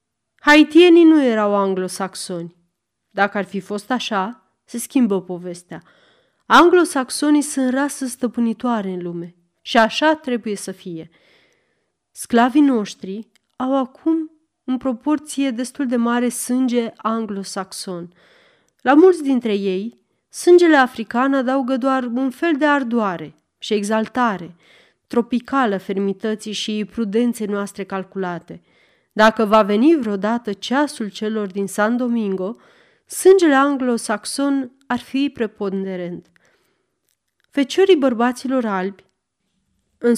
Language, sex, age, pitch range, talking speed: Romanian, female, 30-49, 200-265 Hz, 110 wpm